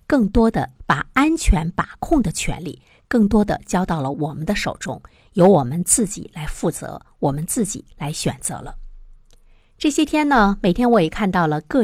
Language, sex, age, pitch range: Chinese, female, 50-69, 160-225 Hz